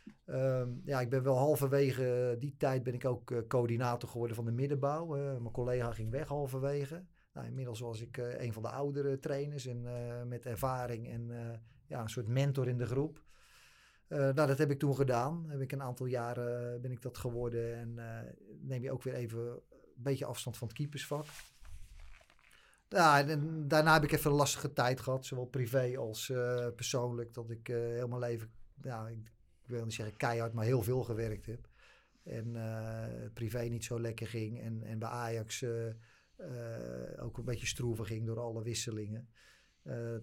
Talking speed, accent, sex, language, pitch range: 180 wpm, Dutch, male, Dutch, 110-130 Hz